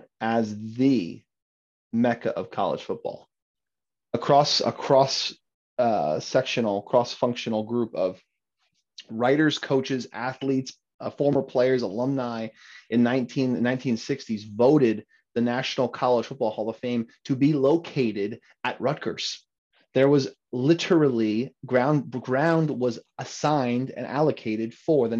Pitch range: 110-140 Hz